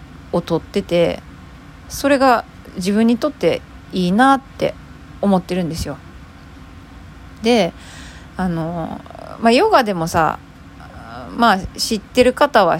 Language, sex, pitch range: Japanese, female, 160-235 Hz